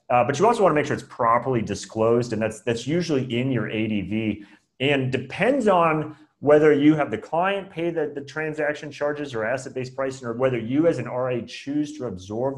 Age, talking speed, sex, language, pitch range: 30-49, 205 wpm, male, English, 110-140 Hz